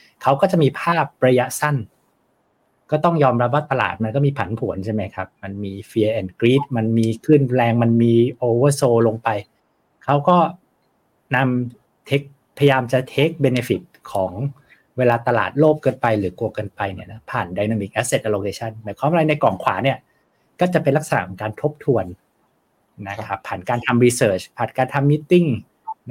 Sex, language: male, Thai